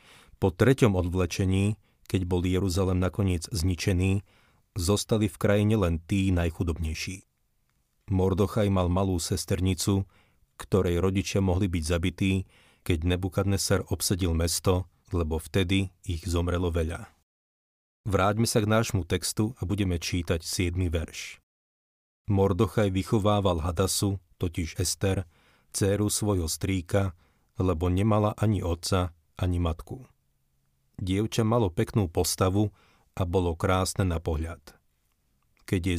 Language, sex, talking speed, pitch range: Slovak, male, 110 wpm, 85-100 Hz